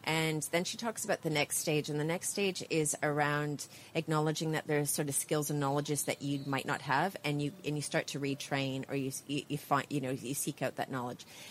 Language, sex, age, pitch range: English, female, 30-49, 145-165 Hz